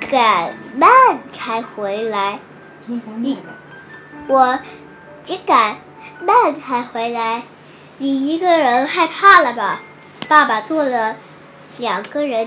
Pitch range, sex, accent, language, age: 250-340 Hz, male, native, Chinese, 10-29